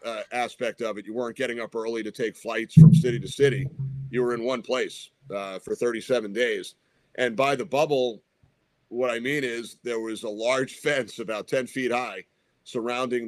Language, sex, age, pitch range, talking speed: English, male, 40-59, 115-135 Hz, 195 wpm